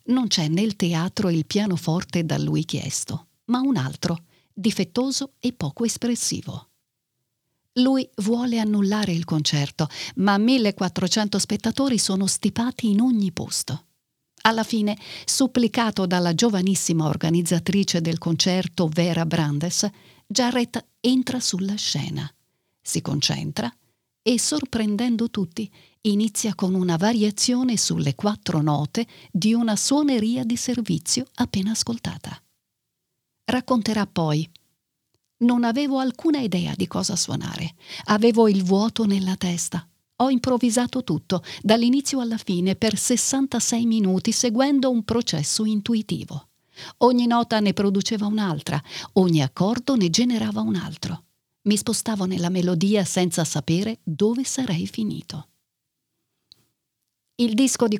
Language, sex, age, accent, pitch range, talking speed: Italian, female, 50-69, native, 175-235 Hz, 115 wpm